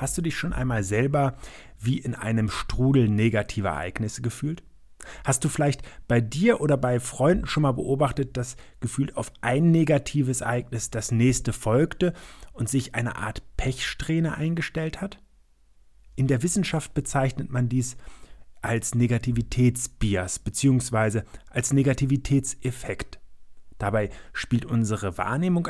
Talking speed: 130 wpm